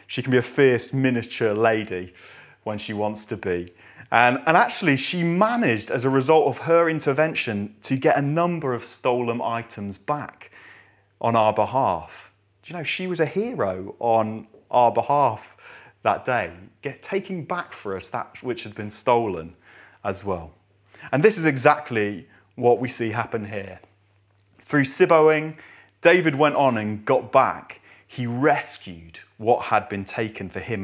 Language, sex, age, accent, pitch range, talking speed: English, male, 30-49, British, 100-135 Hz, 160 wpm